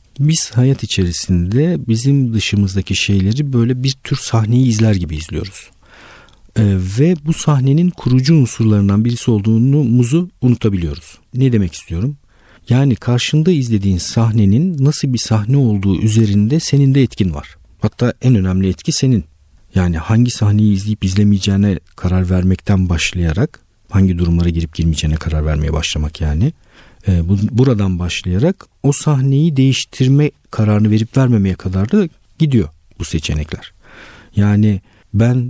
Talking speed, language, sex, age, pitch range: 125 wpm, Turkish, male, 50-69, 90-125 Hz